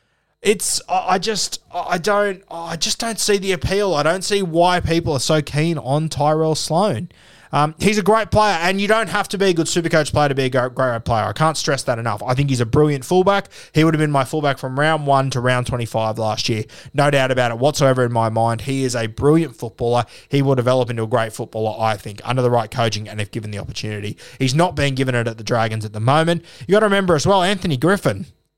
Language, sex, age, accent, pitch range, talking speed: English, male, 20-39, Australian, 130-195 Hz, 250 wpm